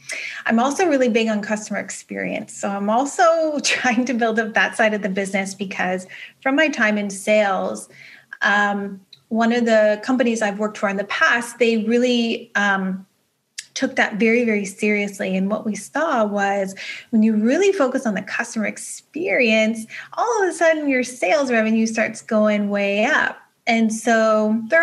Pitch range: 205-245 Hz